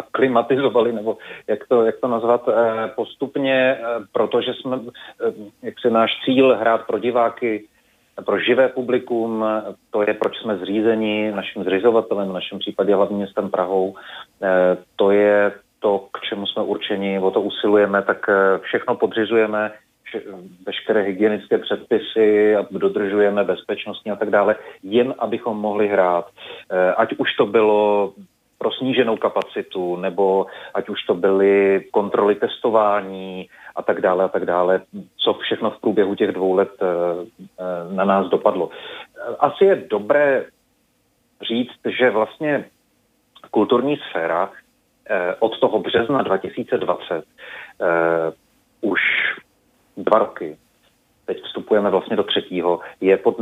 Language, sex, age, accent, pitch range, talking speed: Czech, male, 30-49, native, 95-115 Hz, 125 wpm